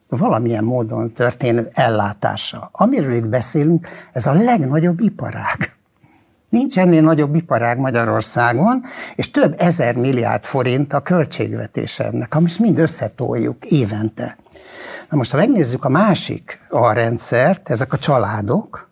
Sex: male